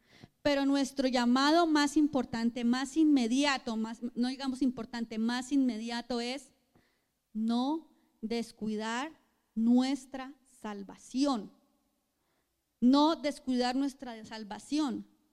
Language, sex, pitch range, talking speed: Spanish, female, 245-310 Hz, 85 wpm